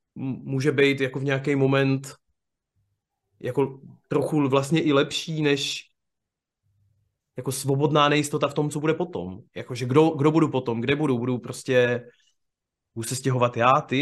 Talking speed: 140 wpm